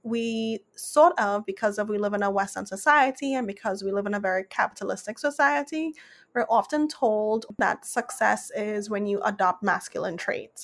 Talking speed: 175 wpm